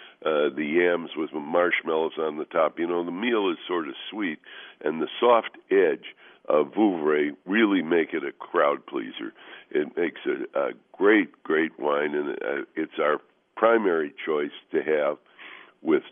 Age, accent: 60-79, American